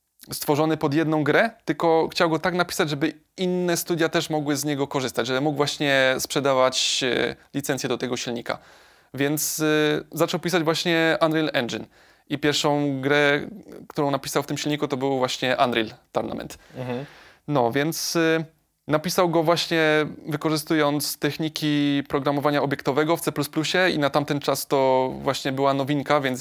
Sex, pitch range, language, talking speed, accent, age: male, 140-155 Hz, Polish, 145 wpm, native, 20-39